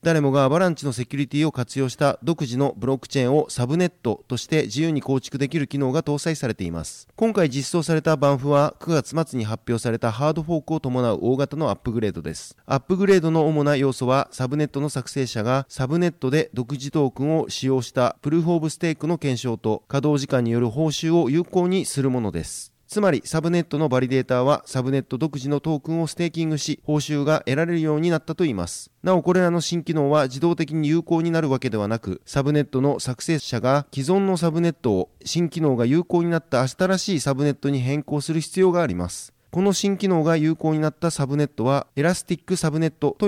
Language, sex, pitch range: Japanese, male, 130-165 Hz